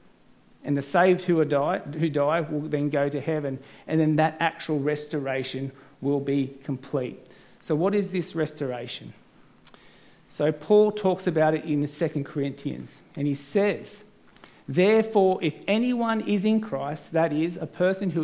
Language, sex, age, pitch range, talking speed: English, male, 50-69, 150-195 Hz, 150 wpm